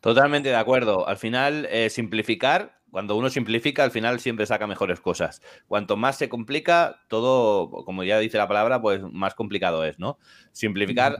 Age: 30-49